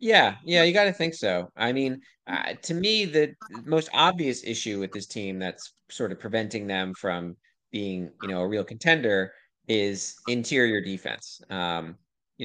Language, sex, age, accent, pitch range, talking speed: English, male, 30-49, American, 95-125 Hz, 175 wpm